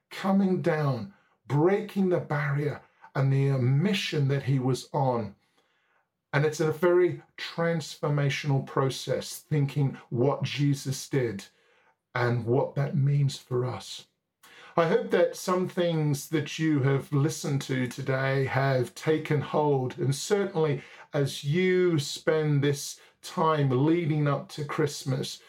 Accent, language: British, English